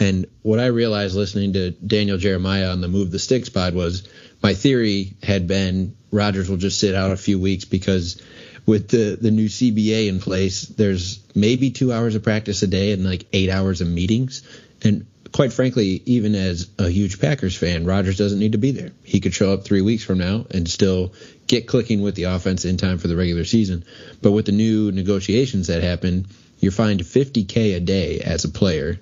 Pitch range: 90-105 Hz